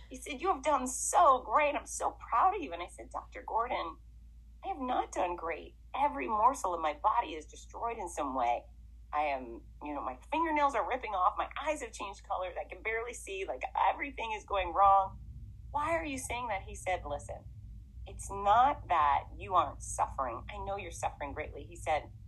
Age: 30-49